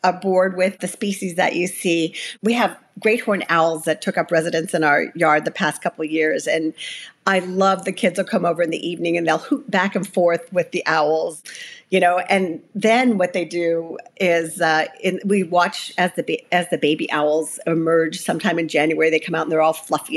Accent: American